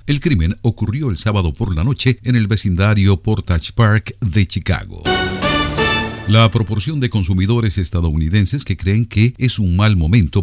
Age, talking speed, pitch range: 50-69, 155 wpm, 95-120 Hz